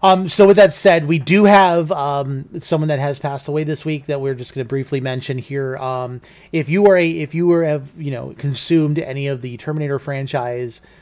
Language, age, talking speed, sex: English, 30-49, 225 wpm, male